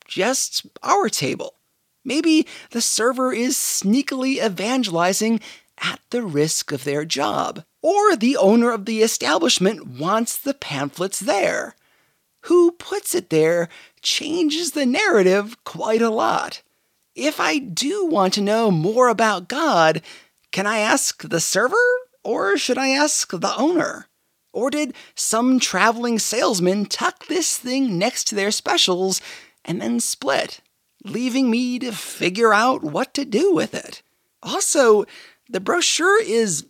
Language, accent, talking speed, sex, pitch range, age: English, American, 135 wpm, male, 200-295 Hz, 30-49